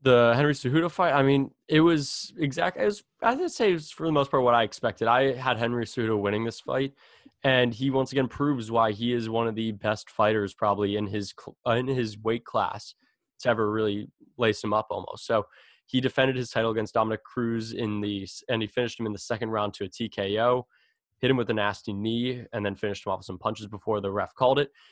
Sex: male